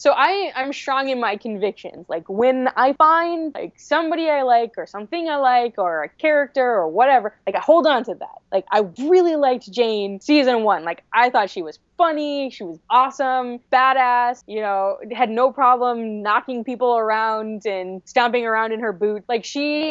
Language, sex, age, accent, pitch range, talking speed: English, female, 10-29, American, 210-270 Hz, 190 wpm